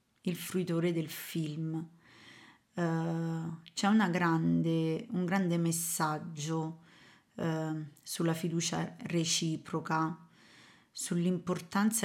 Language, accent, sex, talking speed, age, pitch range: Italian, native, female, 60 wpm, 30-49, 160-185 Hz